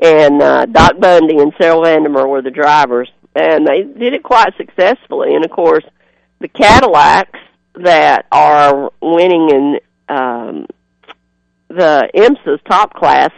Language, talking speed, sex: English, 135 wpm, female